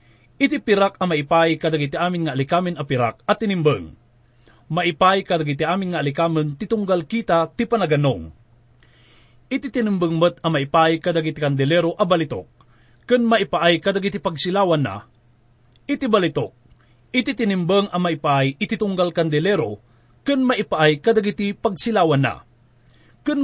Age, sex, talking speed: 30-49, male, 130 wpm